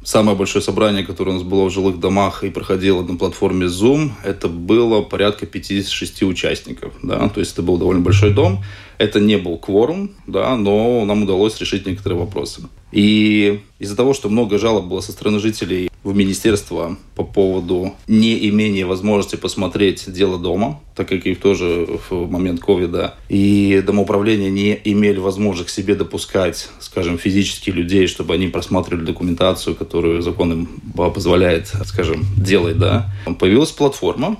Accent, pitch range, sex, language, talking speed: native, 95-105 Hz, male, Russian, 155 wpm